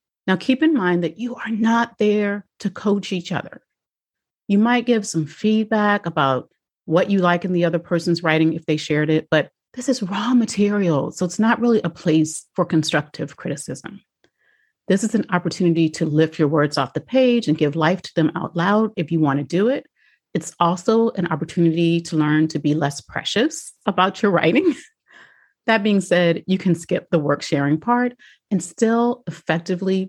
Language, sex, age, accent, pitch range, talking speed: English, female, 40-59, American, 160-210 Hz, 185 wpm